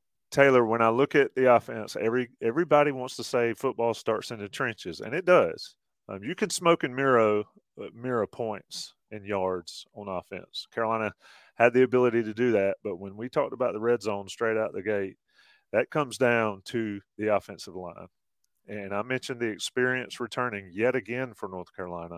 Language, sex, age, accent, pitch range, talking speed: English, male, 30-49, American, 105-130 Hz, 185 wpm